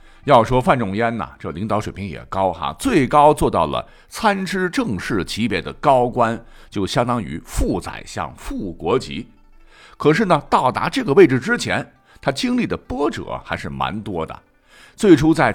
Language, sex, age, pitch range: Chinese, male, 60-79, 105-155 Hz